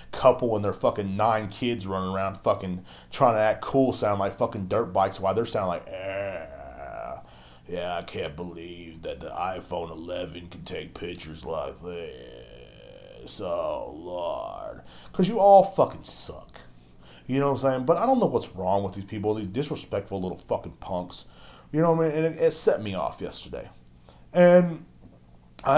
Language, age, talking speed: English, 30-49, 175 wpm